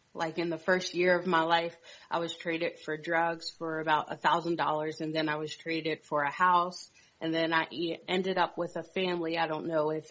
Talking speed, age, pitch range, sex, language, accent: 225 wpm, 30-49, 160-175 Hz, female, English, American